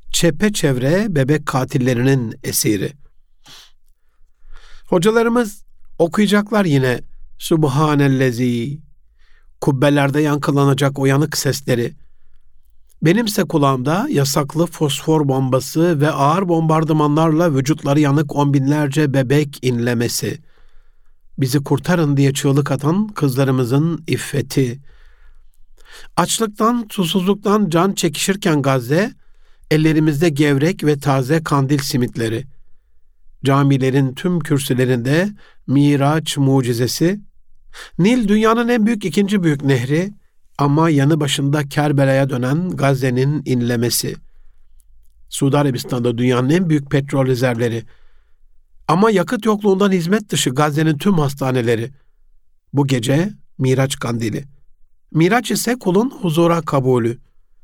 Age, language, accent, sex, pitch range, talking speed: 50-69, Turkish, native, male, 130-170 Hz, 90 wpm